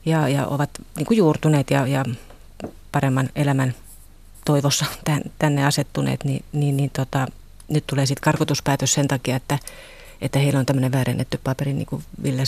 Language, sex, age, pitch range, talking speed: Finnish, female, 30-49, 130-155 Hz, 150 wpm